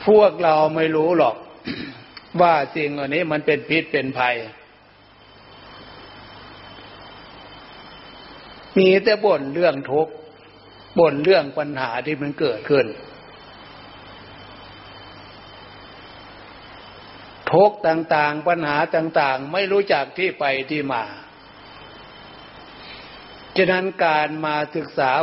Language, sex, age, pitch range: Thai, male, 60-79, 125-160 Hz